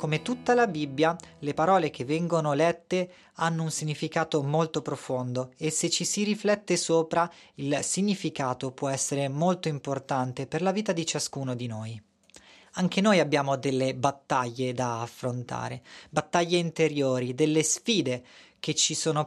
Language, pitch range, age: Italian, 135-180 Hz, 30-49